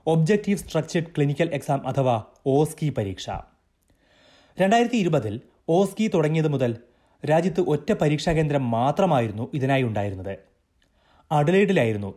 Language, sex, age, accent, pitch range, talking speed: Malayalam, male, 30-49, native, 120-170 Hz, 100 wpm